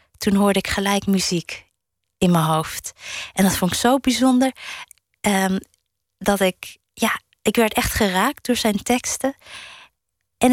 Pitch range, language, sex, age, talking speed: 190-235 Hz, Dutch, female, 20-39, 150 wpm